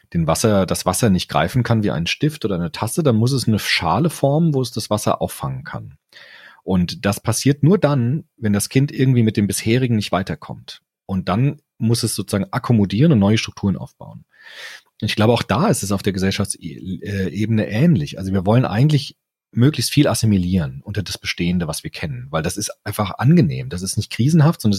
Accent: German